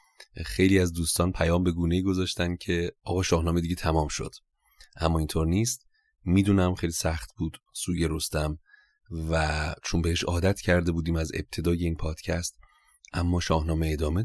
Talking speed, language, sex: 145 wpm, Persian, male